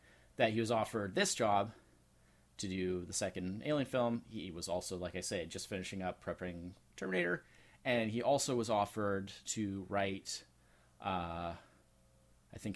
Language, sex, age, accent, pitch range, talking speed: English, male, 30-49, American, 85-120 Hz, 155 wpm